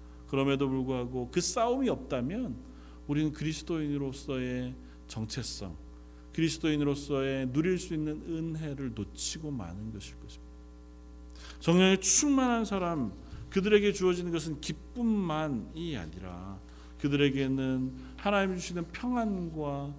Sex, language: male, Korean